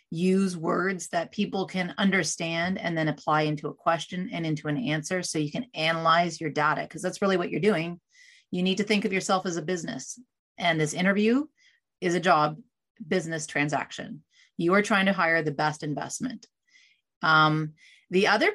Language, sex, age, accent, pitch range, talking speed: English, female, 30-49, American, 170-230 Hz, 180 wpm